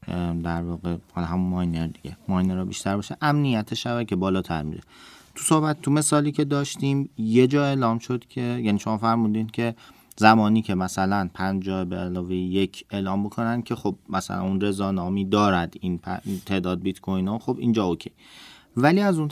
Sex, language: male, Persian